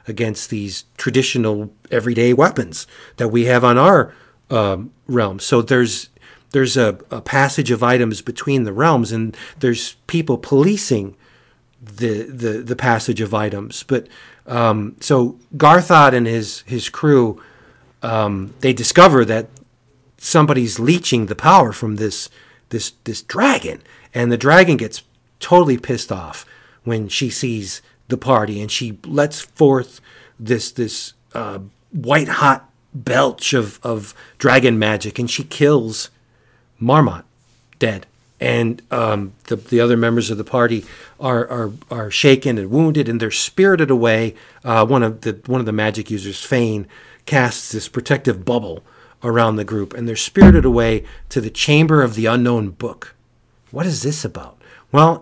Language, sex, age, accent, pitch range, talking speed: English, male, 40-59, American, 110-135 Hz, 150 wpm